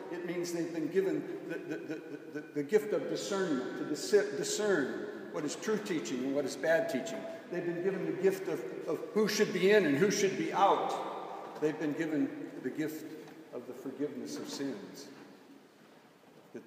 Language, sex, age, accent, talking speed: English, male, 60-79, American, 175 wpm